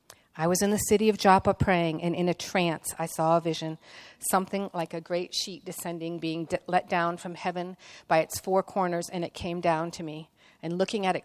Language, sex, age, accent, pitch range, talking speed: English, female, 50-69, American, 170-200 Hz, 220 wpm